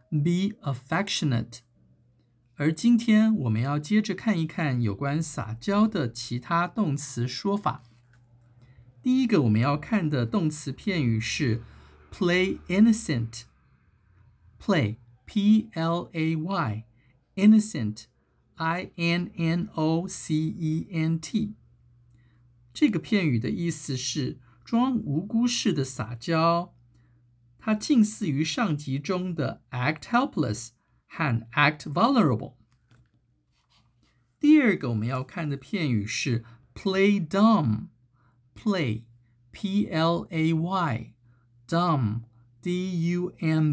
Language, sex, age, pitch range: Chinese, male, 50-69, 120-175 Hz